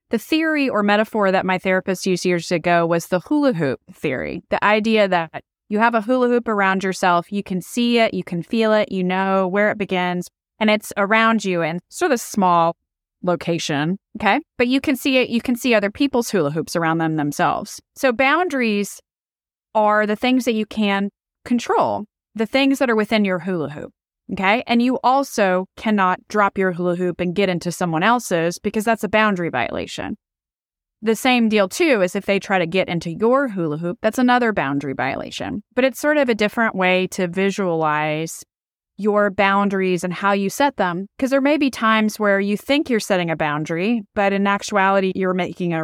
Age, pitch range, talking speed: 20-39, 180-225 Hz, 200 wpm